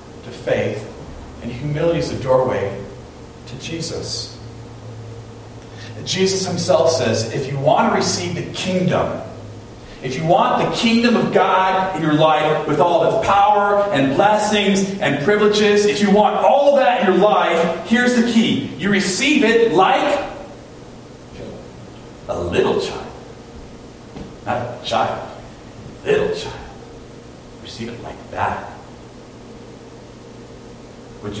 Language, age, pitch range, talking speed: English, 40-59, 115-195 Hz, 130 wpm